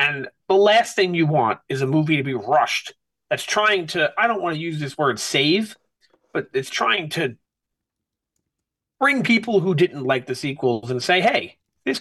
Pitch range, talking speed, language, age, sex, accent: 135-190 Hz, 190 wpm, English, 30-49, male, American